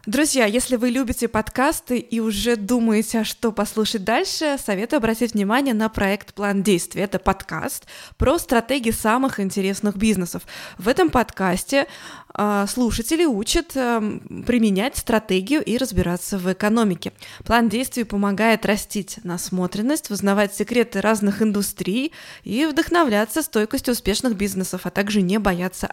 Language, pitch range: Russian, 195-245 Hz